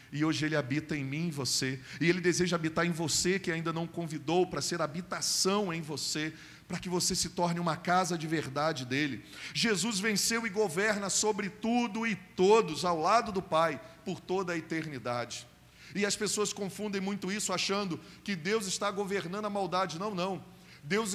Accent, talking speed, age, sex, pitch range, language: Brazilian, 185 wpm, 40-59, male, 150-200 Hz, Portuguese